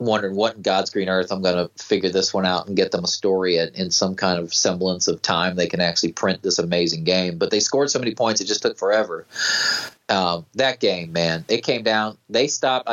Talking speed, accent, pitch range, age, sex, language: 240 wpm, American, 90-110 Hz, 30-49, male, English